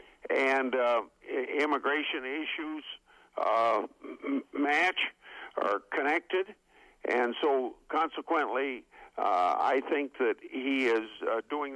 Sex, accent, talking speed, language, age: male, American, 95 wpm, English, 60-79